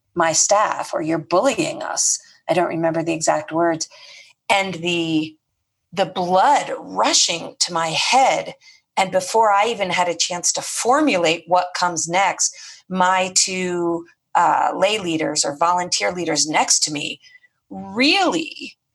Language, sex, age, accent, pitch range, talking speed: English, female, 40-59, American, 160-195 Hz, 140 wpm